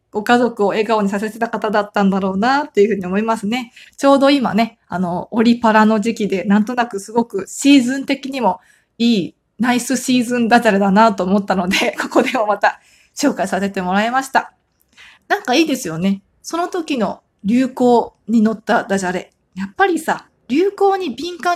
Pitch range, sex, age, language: 200-270 Hz, female, 20-39, Japanese